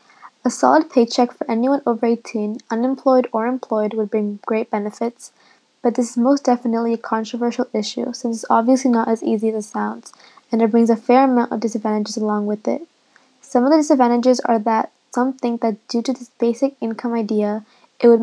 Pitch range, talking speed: 225-255 Hz, 195 wpm